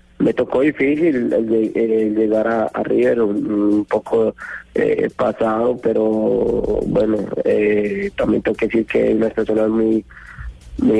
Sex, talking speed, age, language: male, 130 wpm, 30-49, Spanish